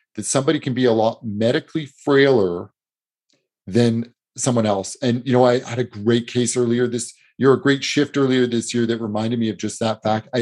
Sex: male